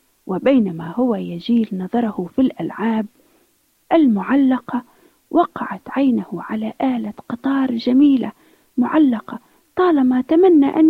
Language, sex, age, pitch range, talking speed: Arabic, female, 40-59, 240-340 Hz, 95 wpm